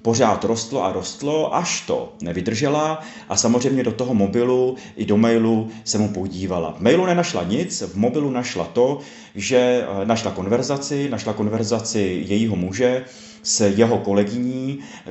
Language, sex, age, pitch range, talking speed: Czech, male, 30-49, 100-120 Hz, 145 wpm